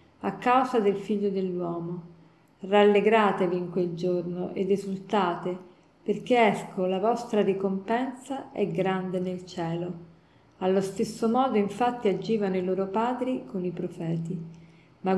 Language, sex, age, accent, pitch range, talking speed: Italian, female, 40-59, native, 180-220 Hz, 125 wpm